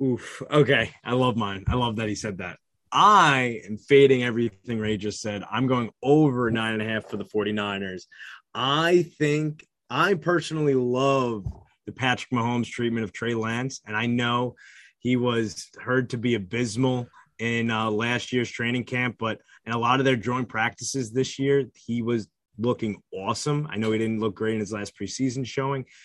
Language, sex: English, male